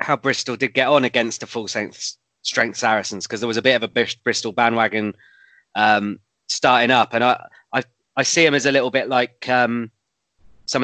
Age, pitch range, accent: 20-39, 115-140 Hz, British